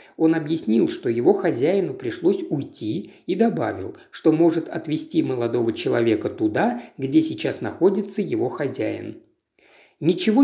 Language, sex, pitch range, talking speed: Russian, male, 150-225 Hz, 120 wpm